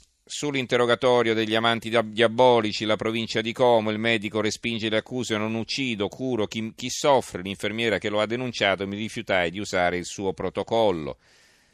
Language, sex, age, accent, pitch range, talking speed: Italian, male, 40-59, native, 95-115 Hz, 160 wpm